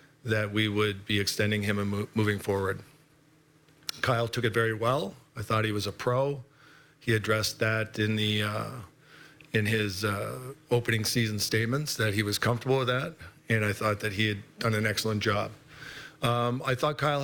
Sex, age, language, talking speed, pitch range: male, 50-69, English, 180 wpm, 110-130 Hz